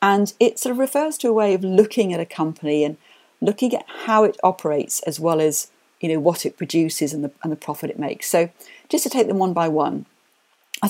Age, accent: 50-69, British